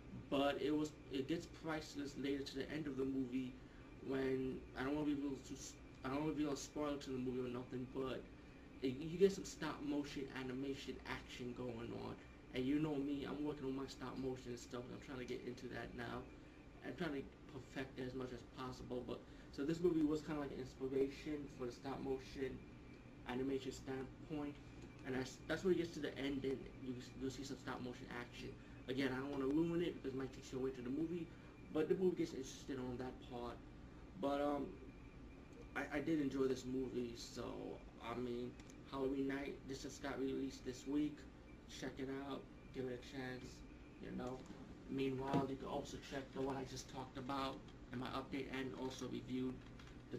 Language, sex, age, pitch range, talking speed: English, male, 20-39, 130-140 Hz, 210 wpm